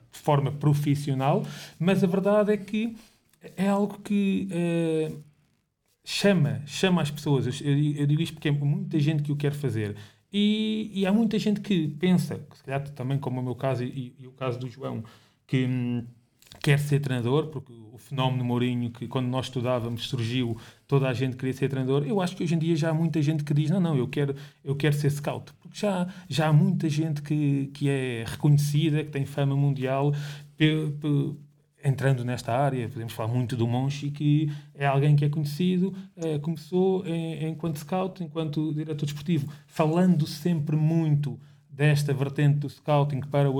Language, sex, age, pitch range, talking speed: Portuguese, male, 30-49, 135-155 Hz, 185 wpm